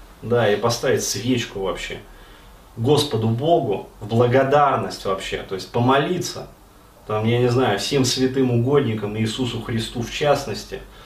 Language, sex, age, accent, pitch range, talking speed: Russian, male, 30-49, native, 110-140 Hz, 130 wpm